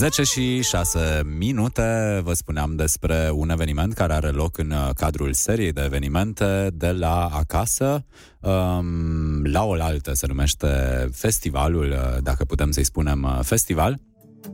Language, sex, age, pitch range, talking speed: Romanian, male, 20-39, 75-95 Hz, 125 wpm